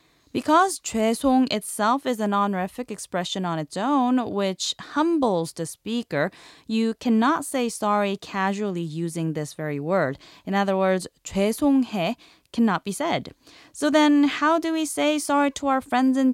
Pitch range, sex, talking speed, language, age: 175-245 Hz, female, 150 wpm, English, 20-39